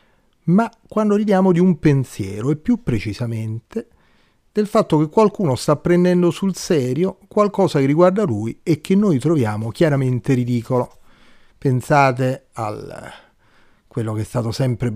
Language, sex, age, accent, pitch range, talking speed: Italian, male, 40-59, native, 115-155 Hz, 135 wpm